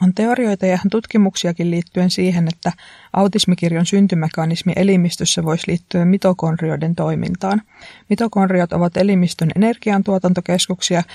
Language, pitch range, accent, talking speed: Finnish, 165-190 Hz, native, 95 wpm